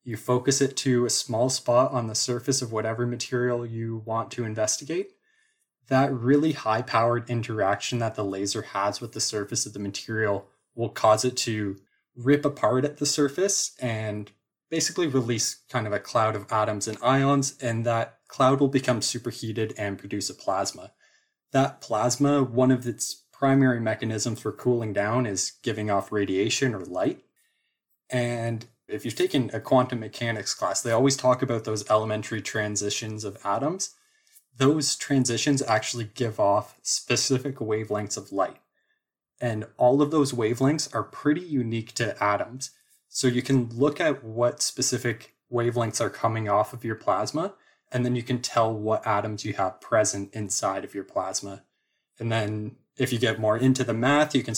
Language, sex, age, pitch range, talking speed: English, male, 20-39, 110-130 Hz, 165 wpm